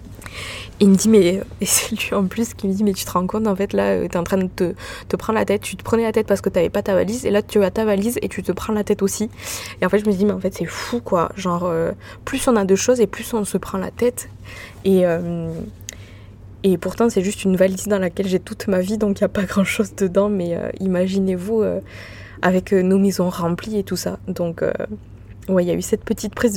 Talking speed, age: 270 wpm, 20-39